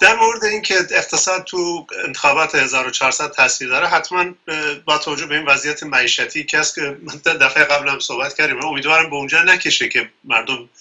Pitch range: 140-180 Hz